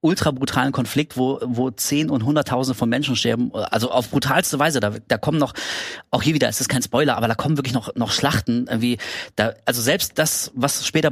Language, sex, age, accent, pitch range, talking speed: German, male, 30-49, German, 120-150 Hz, 210 wpm